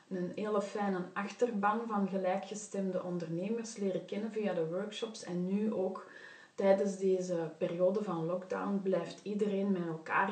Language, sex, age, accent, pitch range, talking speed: Dutch, female, 30-49, Dutch, 175-215 Hz, 140 wpm